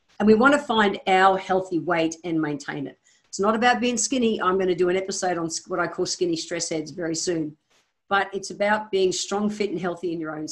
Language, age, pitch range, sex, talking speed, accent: English, 50-69, 170-210 Hz, female, 230 wpm, Australian